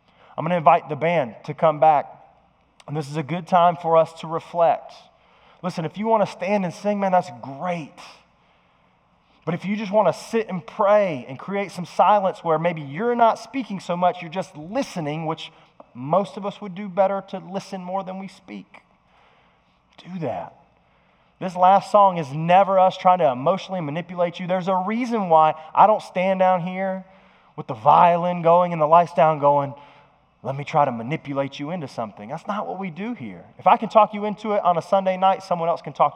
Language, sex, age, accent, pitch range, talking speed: English, male, 20-39, American, 145-190 Hz, 210 wpm